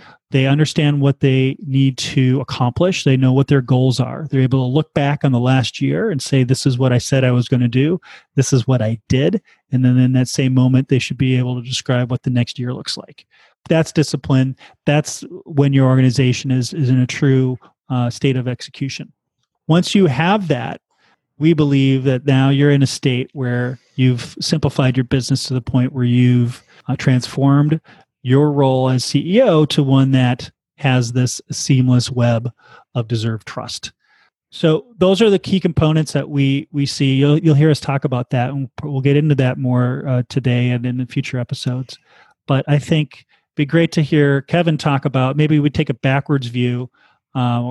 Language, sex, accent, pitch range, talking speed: English, male, American, 125-150 Hz, 200 wpm